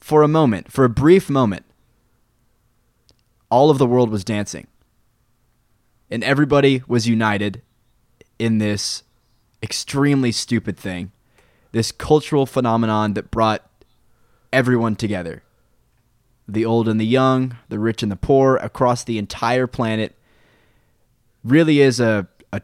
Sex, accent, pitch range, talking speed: male, American, 110-130 Hz, 125 wpm